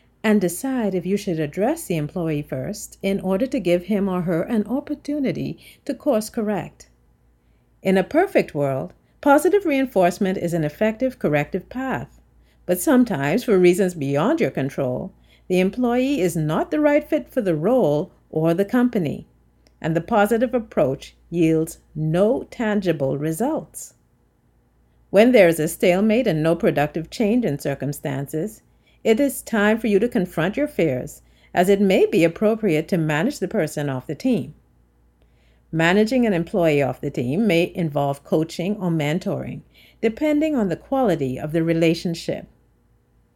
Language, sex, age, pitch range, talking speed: English, female, 50-69, 155-240 Hz, 150 wpm